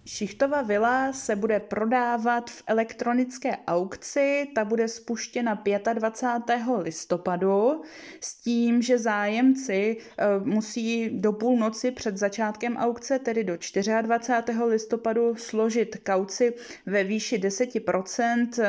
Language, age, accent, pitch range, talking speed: Czech, 20-39, native, 195-235 Hz, 105 wpm